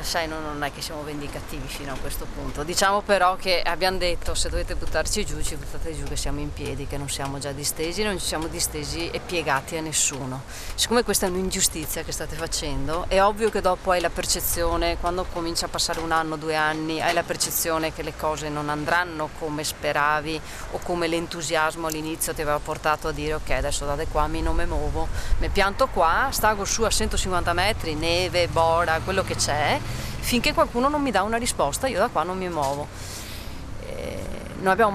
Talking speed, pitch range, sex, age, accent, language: 200 wpm, 150-185 Hz, female, 30-49, native, Italian